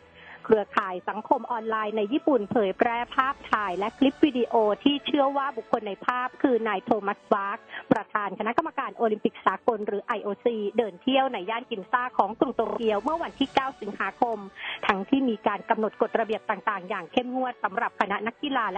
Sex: female